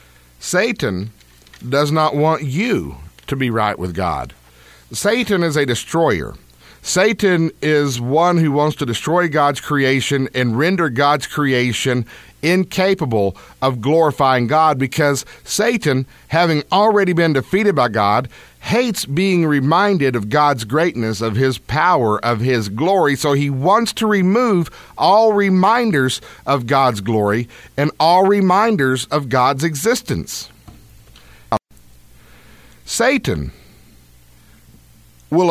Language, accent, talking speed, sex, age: English, American, 115 wpm, male, 50-69